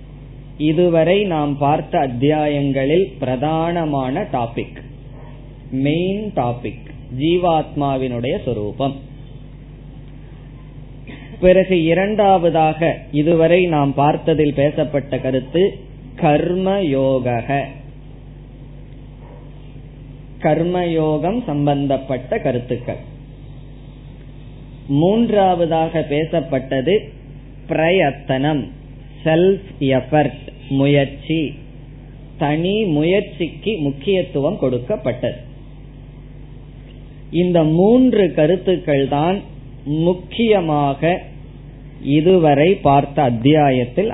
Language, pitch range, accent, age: Tamil, 140-165 Hz, native, 20-39